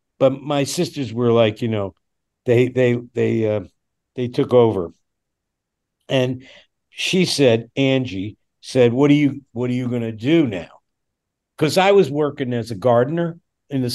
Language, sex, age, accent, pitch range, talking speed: English, male, 50-69, American, 120-145 Hz, 165 wpm